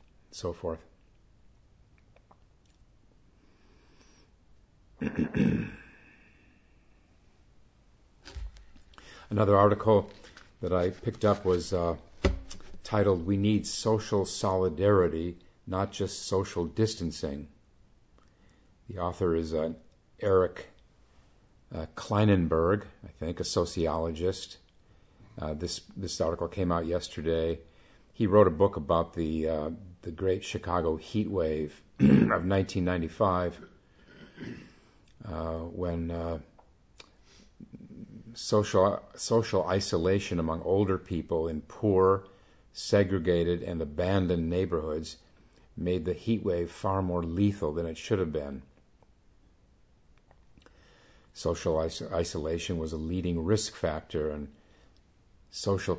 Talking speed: 95 wpm